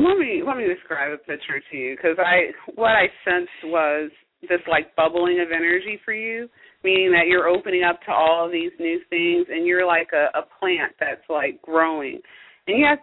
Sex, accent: female, American